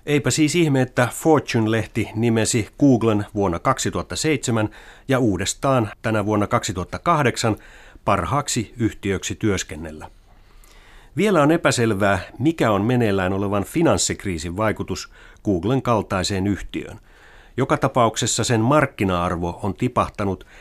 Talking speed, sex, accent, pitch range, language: 100 wpm, male, native, 95-125 Hz, Finnish